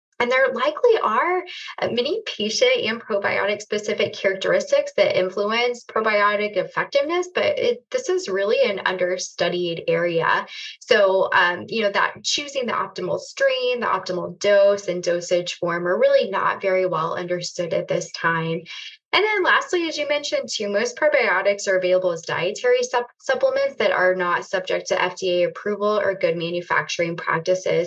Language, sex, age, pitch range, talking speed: English, female, 10-29, 180-290 Hz, 155 wpm